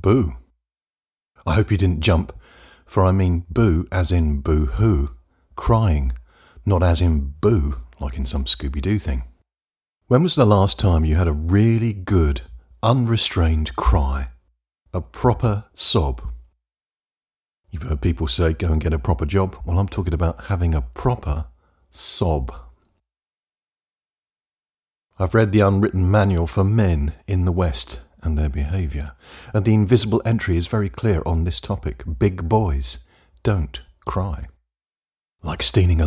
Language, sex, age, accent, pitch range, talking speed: English, male, 50-69, British, 75-105 Hz, 145 wpm